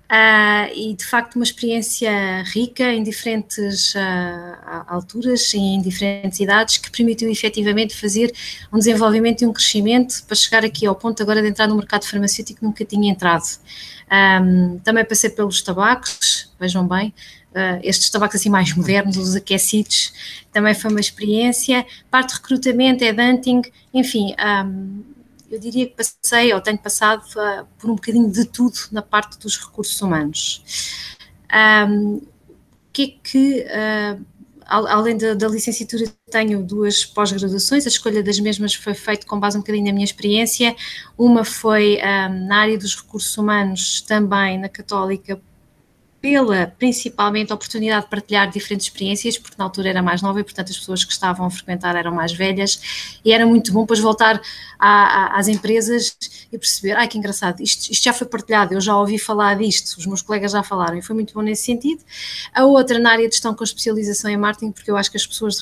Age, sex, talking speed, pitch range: 20-39, female, 170 wpm, 195-225 Hz